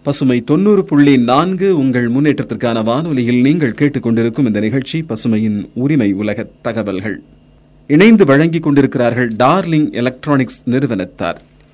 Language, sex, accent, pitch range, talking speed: Tamil, male, native, 115-145 Hz, 110 wpm